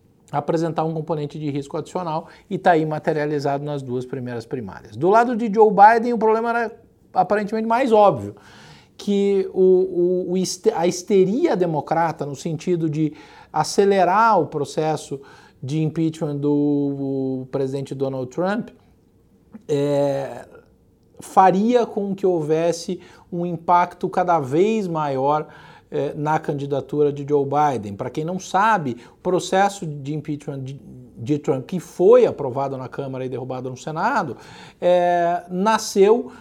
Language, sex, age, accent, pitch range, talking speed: Portuguese, male, 50-69, Brazilian, 150-200 Hz, 125 wpm